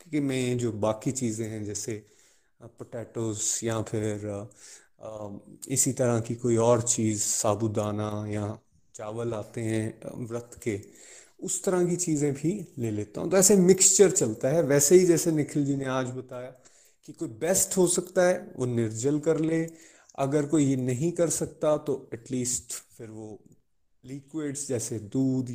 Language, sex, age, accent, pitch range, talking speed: Hindi, male, 30-49, native, 115-165 Hz, 155 wpm